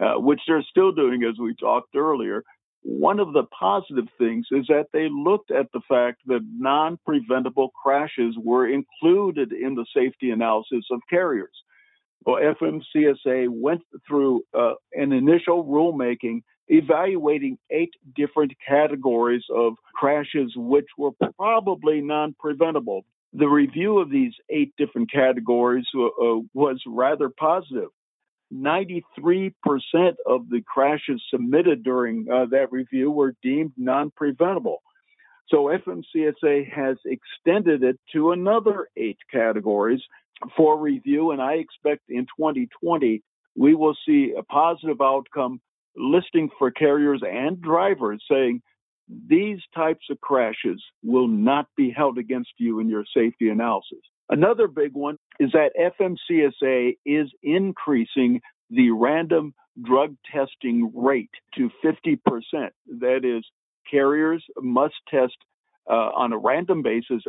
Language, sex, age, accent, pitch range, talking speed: English, male, 50-69, American, 125-170 Hz, 125 wpm